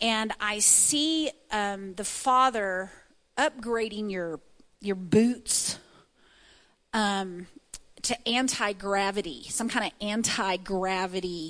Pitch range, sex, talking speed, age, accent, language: 200-240 Hz, female, 90 wpm, 40-59, American, English